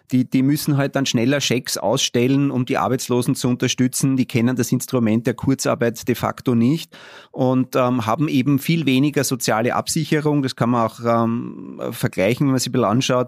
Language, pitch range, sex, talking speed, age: German, 115-135 Hz, male, 185 wpm, 30-49